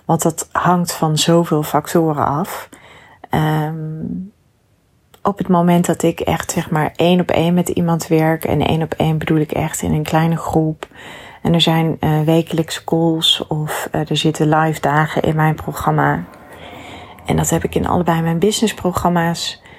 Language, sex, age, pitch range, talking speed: Dutch, female, 30-49, 155-175 Hz, 170 wpm